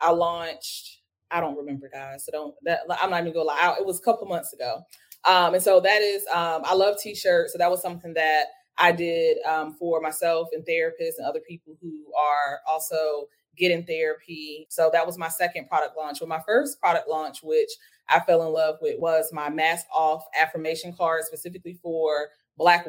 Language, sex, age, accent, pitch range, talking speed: English, female, 20-39, American, 160-190 Hz, 205 wpm